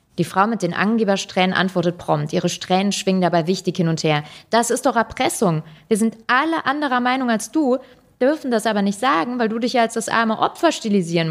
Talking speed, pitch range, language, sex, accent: 205 wpm, 175-225 Hz, German, female, German